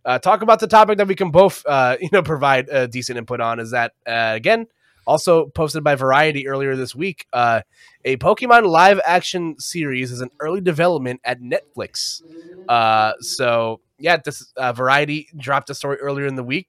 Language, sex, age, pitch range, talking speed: English, male, 20-39, 120-160 Hz, 195 wpm